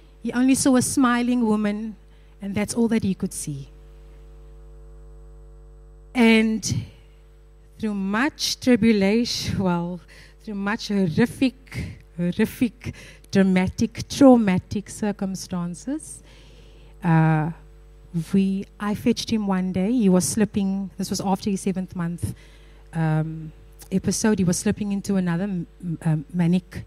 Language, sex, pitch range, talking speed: English, female, 175-230 Hz, 115 wpm